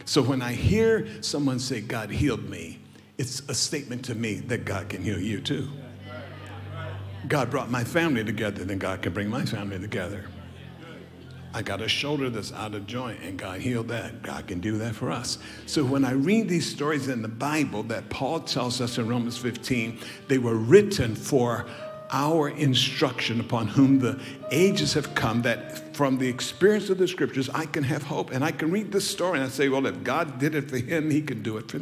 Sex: male